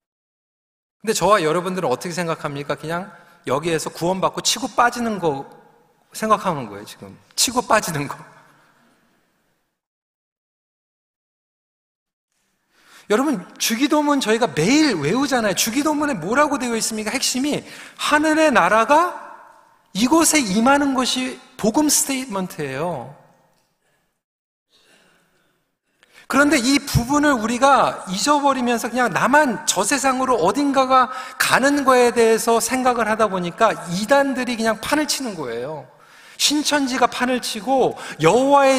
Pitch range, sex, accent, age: 205-280 Hz, male, native, 40-59